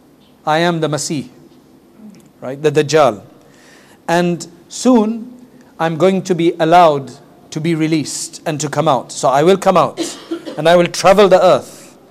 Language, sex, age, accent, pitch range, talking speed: English, male, 40-59, South African, 155-195 Hz, 160 wpm